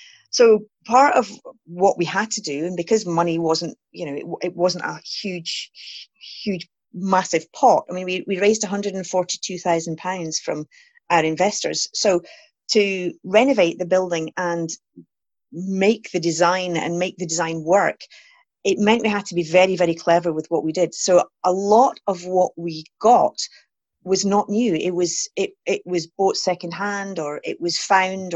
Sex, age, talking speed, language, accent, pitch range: female, 30-49, 180 wpm, English, British, 165-205 Hz